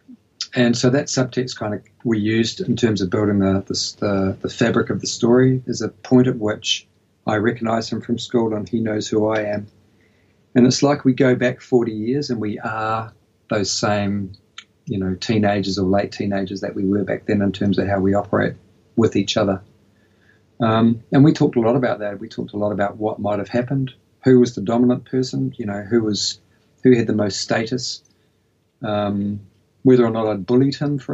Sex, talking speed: male, 205 wpm